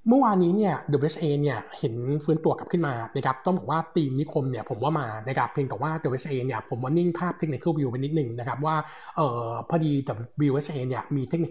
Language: Thai